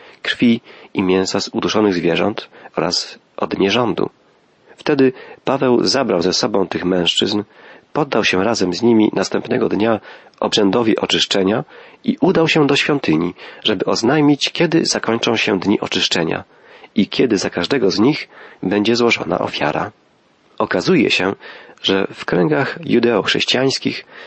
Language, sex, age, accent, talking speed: Polish, male, 40-59, native, 130 wpm